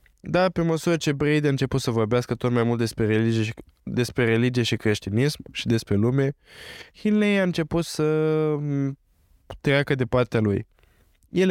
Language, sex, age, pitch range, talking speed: Romanian, male, 20-39, 115-145 Hz, 160 wpm